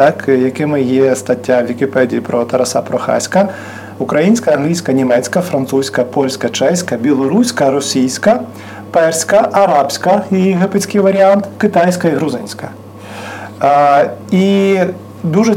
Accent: native